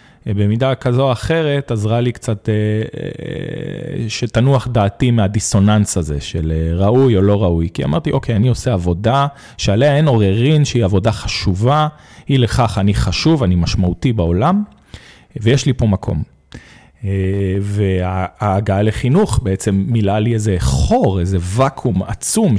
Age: 40-59